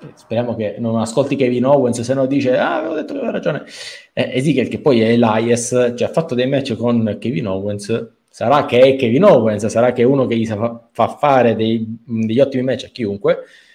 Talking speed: 210 wpm